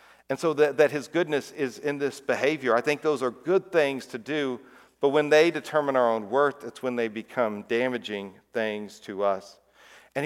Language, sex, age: English, male, 50-69